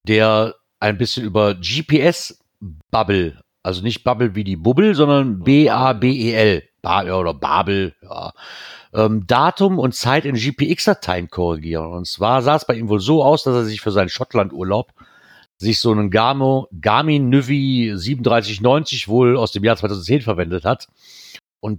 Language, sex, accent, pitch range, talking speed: German, male, German, 105-130 Hz, 145 wpm